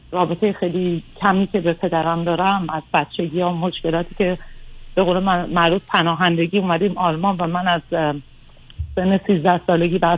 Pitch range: 175-205 Hz